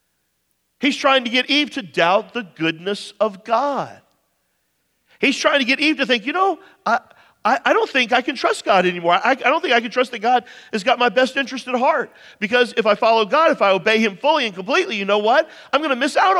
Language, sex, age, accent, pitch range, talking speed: English, male, 50-69, American, 210-280 Hz, 240 wpm